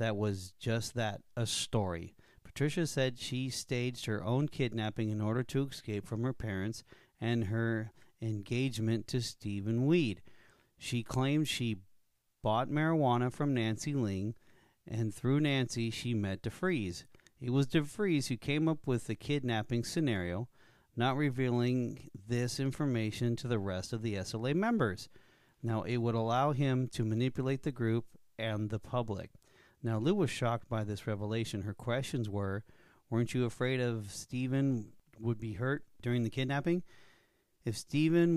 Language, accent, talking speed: English, American, 150 wpm